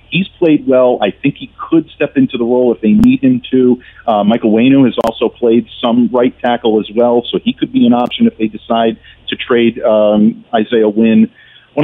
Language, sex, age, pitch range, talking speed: English, male, 40-59, 105-140 Hz, 215 wpm